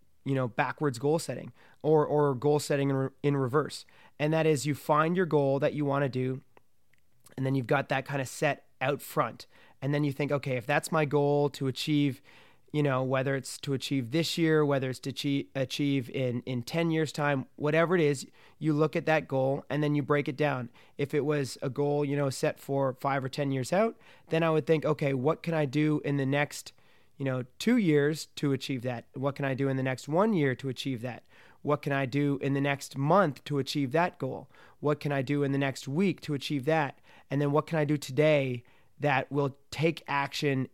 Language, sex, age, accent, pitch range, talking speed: English, male, 30-49, American, 135-150 Hz, 230 wpm